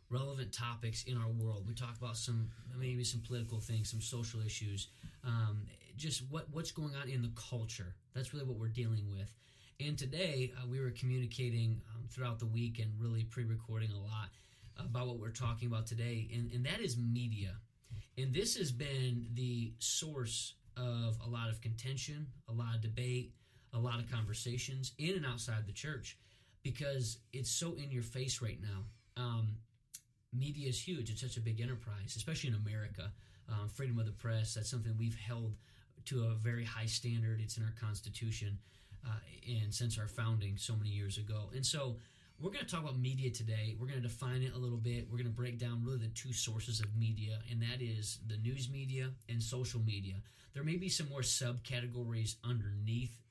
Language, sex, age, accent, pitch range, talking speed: English, male, 30-49, American, 110-125 Hz, 190 wpm